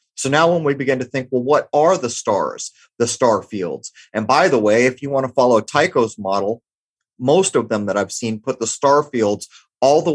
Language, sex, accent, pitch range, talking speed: English, male, American, 110-140 Hz, 225 wpm